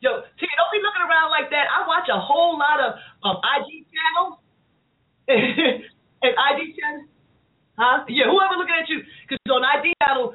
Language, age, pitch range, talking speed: English, 30-49, 215-330 Hz, 180 wpm